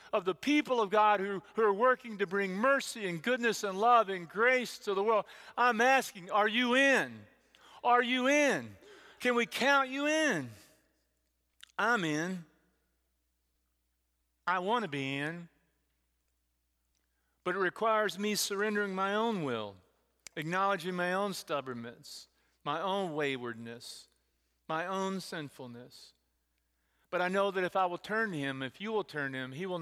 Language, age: English, 40-59